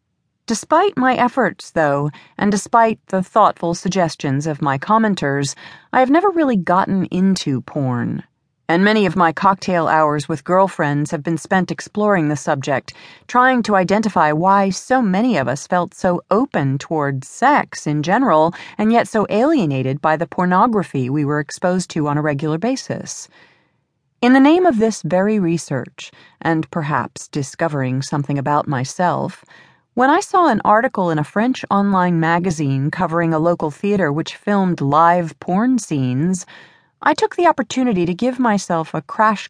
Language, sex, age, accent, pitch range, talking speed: English, female, 40-59, American, 150-215 Hz, 160 wpm